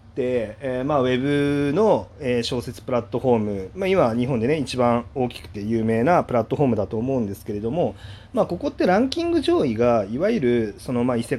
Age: 30-49